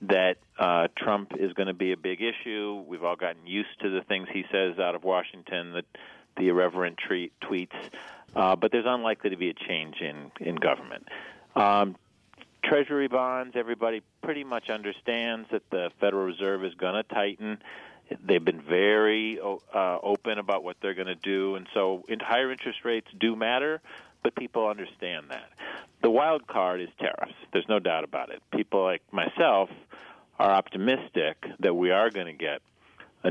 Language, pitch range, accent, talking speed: English, 90-110 Hz, American, 175 wpm